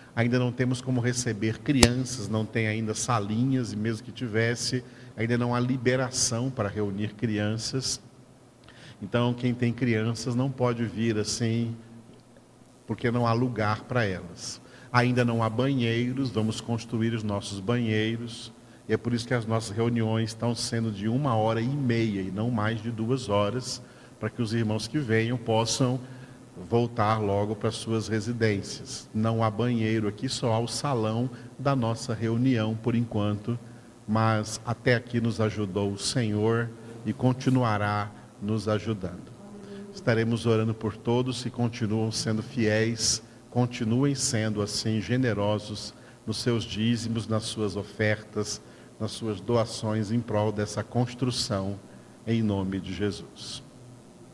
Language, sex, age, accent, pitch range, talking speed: Portuguese, male, 50-69, Brazilian, 110-125 Hz, 140 wpm